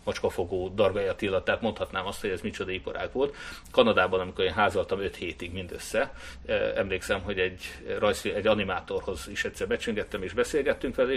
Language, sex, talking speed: Hungarian, male, 160 wpm